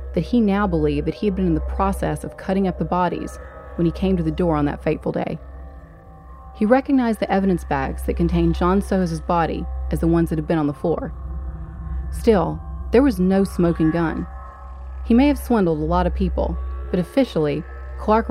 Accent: American